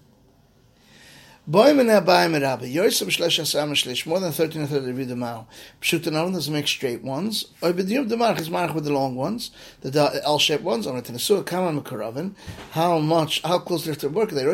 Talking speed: 85 wpm